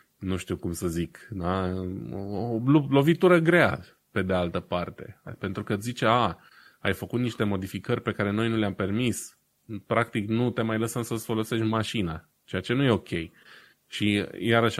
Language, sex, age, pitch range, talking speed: Romanian, male, 20-39, 90-110 Hz, 170 wpm